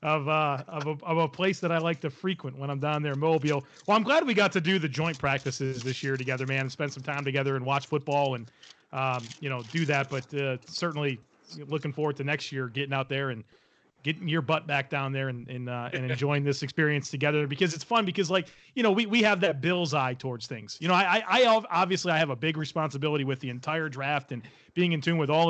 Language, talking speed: English, 250 wpm